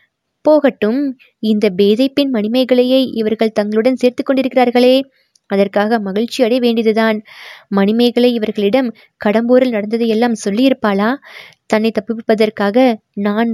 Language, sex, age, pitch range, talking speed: Tamil, female, 20-39, 210-250 Hz, 90 wpm